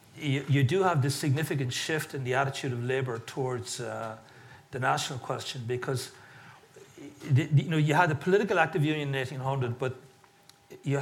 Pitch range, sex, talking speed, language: 130-150 Hz, male, 165 wpm, English